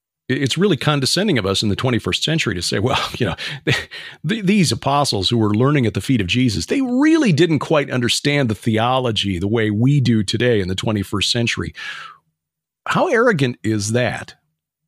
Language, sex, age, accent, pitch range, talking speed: English, male, 40-59, American, 115-155 Hz, 180 wpm